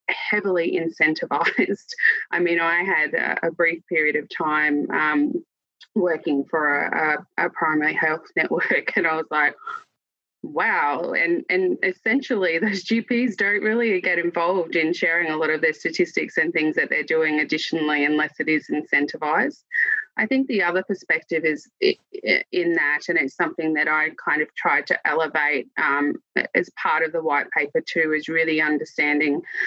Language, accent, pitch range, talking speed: English, Australian, 155-235 Hz, 165 wpm